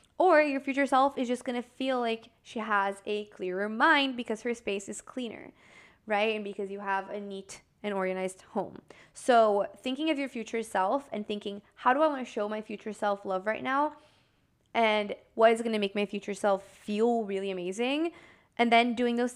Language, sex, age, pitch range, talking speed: English, female, 20-39, 200-250 Hz, 205 wpm